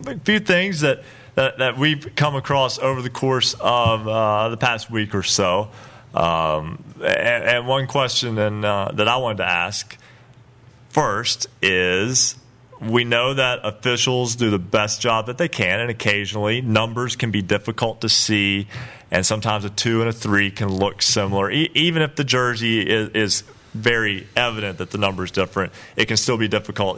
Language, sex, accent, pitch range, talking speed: English, male, American, 105-130 Hz, 175 wpm